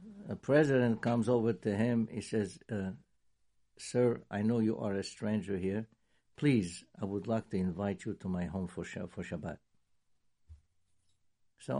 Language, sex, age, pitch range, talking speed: English, male, 60-79, 95-145 Hz, 165 wpm